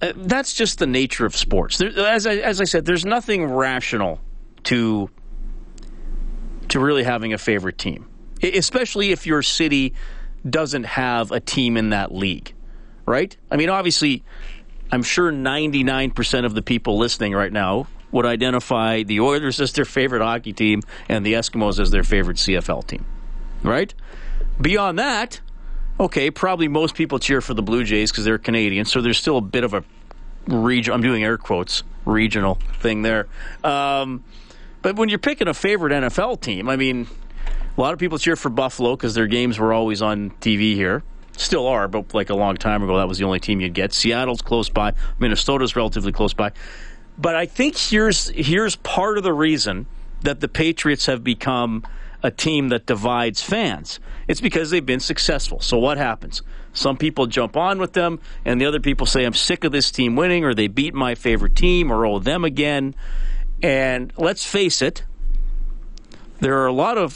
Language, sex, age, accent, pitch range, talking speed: English, male, 40-59, American, 110-155 Hz, 180 wpm